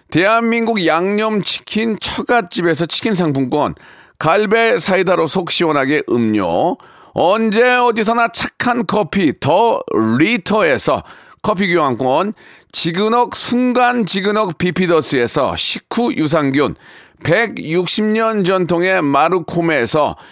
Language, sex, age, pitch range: Korean, male, 40-59, 165-220 Hz